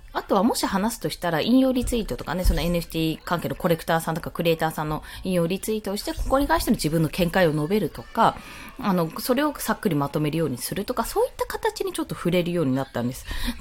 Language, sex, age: Japanese, female, 20-39